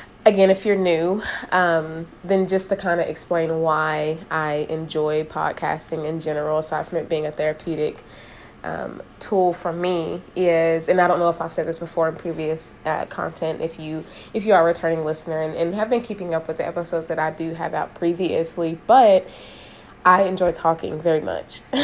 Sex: female